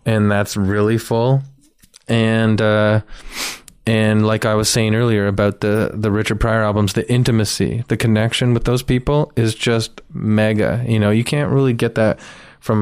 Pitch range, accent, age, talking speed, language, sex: 105-120 Hz, American, 20-39, 170 wpm, English, male